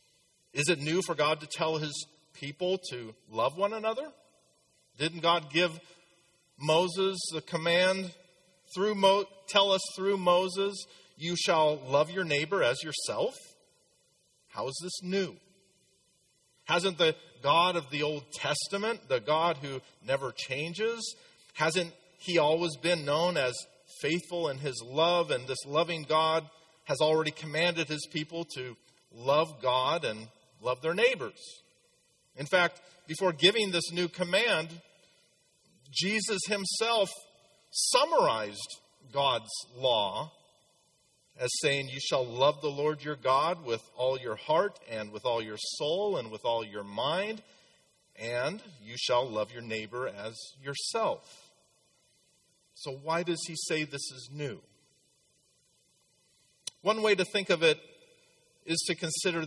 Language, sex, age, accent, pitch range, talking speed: English, male, 40-59, American, 145-190 Hz, 135 wpm